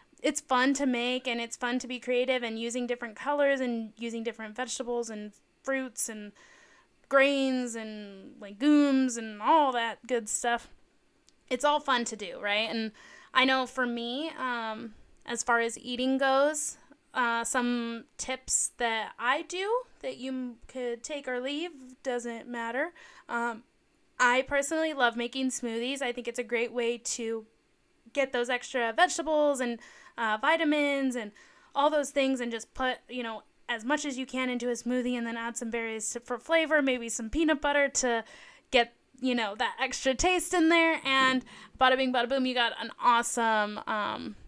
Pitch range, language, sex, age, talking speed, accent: 230-280 Hz, English, female, 10-29, 170 wpm, American